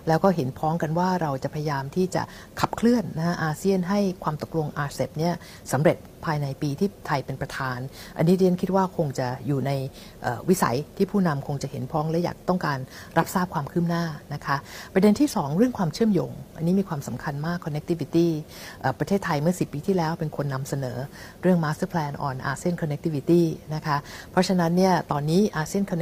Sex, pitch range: female, 145-180 Hz